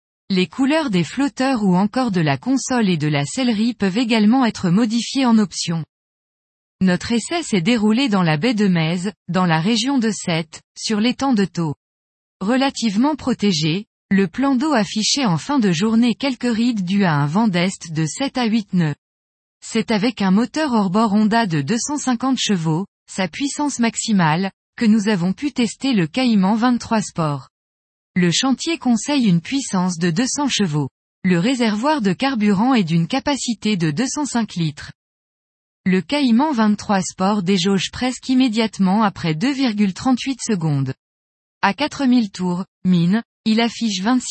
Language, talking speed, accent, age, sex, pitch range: French, 155 wpm, French, 20-39, female, 180-250 Hz